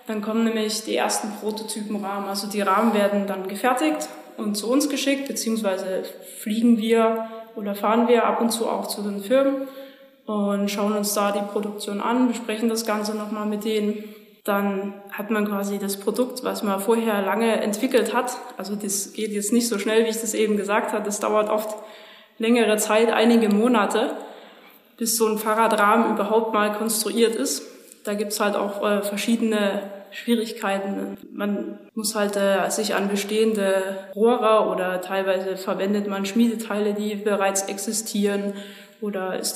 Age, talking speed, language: 20-39, 160 wpm, German